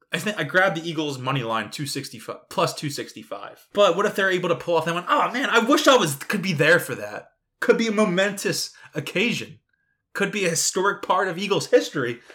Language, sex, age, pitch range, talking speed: English, male, 20-39, 130-175 Hz, 220 wpm